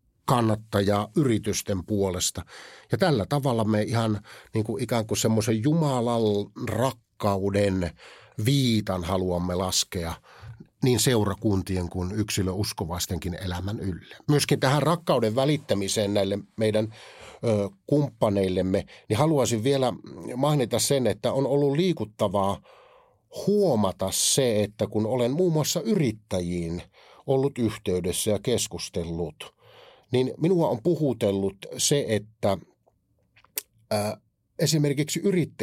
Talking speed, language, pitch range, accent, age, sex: 105 wpm, Finnish, 100-140 Hz, native, 50-69, male